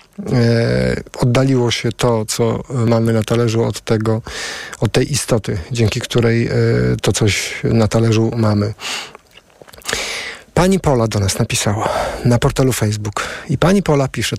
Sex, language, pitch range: male, Polish, 115-130 Hz